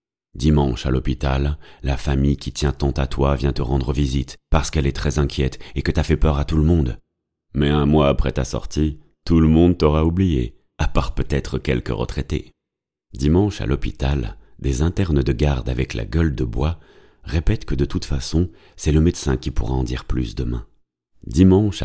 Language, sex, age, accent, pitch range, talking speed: French, male, 30-49, French, 65-80 Hz, 195 wpm